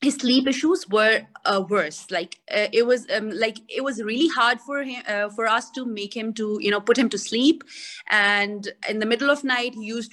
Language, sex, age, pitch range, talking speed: English, female, 30-49, 195-250 Hz, 230 wpm